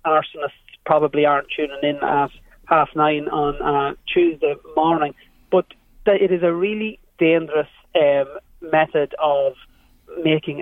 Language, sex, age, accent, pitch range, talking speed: English, male, 30-49, Irish, 140-160 Hz, 125 wpm